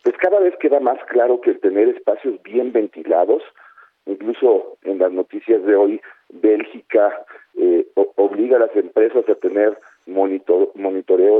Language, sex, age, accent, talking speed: Spanish, male, 50-69, Mexican, 155 wpm